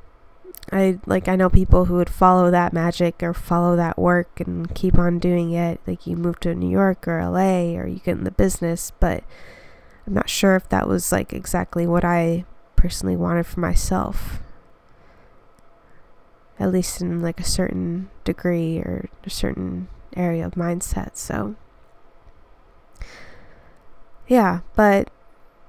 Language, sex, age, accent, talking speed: English, female, 20-39, American, 150 wpm